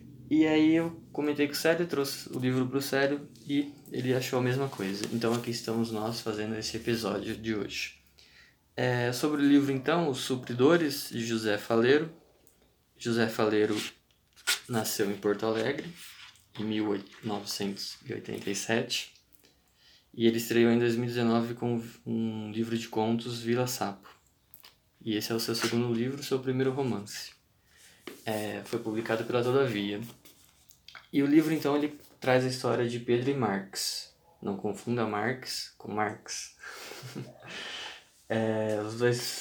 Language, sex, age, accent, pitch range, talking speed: Portuguese, male, 20-39, Brazilian, 105-125 Hz, 140 wpm